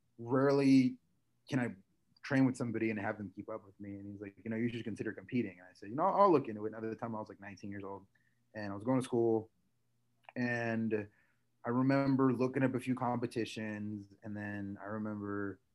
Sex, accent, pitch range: male, American, 100-120 Hz